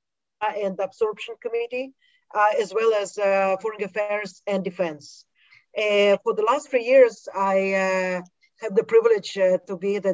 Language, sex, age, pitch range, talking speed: English, female, 30-49, 190-235 Hz, 160 wpm